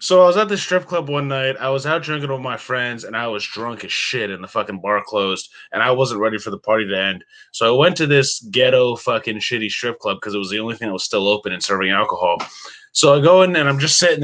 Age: 20-39